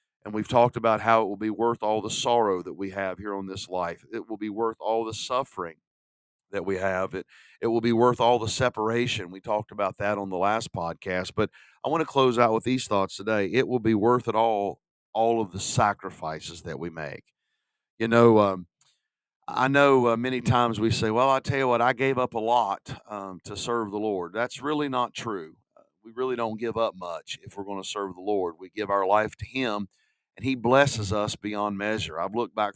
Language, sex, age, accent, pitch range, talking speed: English, male, 50-69, American, 100-120 Hz, 230 wpm